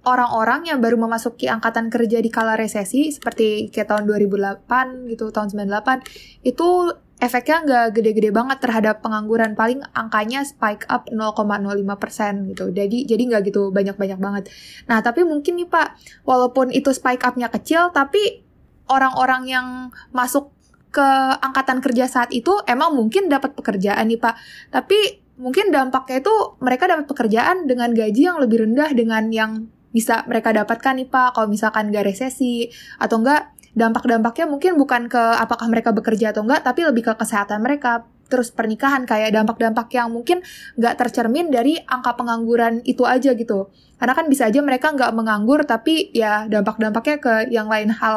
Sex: female